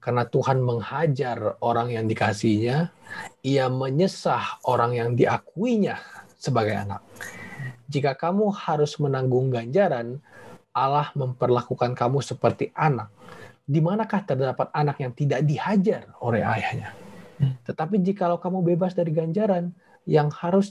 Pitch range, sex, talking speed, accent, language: 125-155 Hz, male, 115 wpm, native, Indonesian